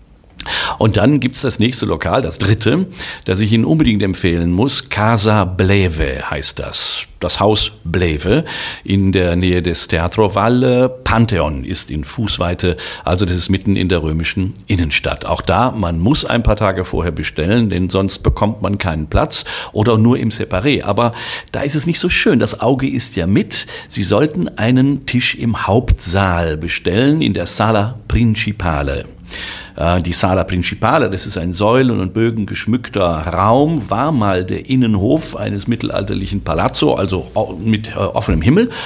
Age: 50-69